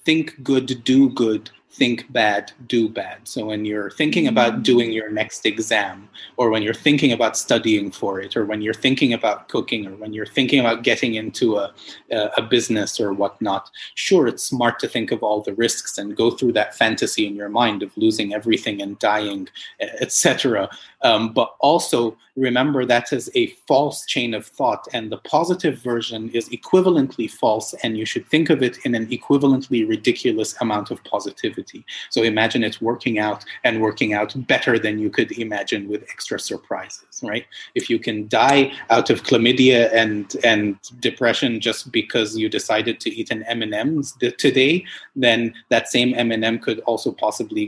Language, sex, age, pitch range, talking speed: English, male, 30-49, 110-130 Hz, 175 wpm